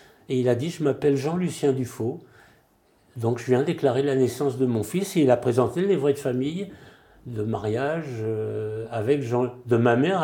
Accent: French